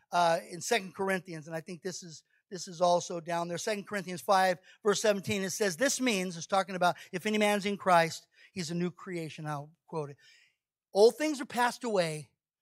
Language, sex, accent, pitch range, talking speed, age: English, male, American, 185-245 Hz, 205 wpm, 50-69